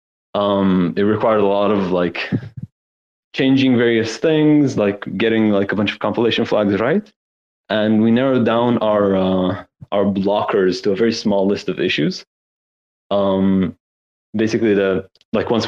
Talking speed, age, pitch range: 150 wpm, 20-39, 95-110 Hz